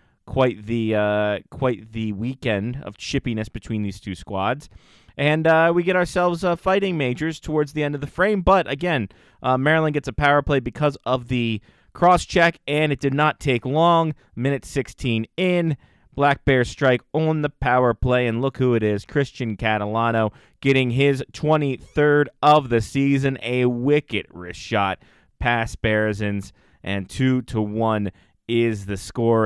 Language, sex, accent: English, male, American